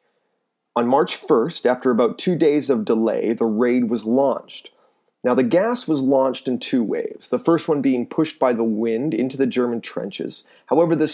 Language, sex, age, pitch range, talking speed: English, male, 30-49, 120-155 Hz, 190 wpm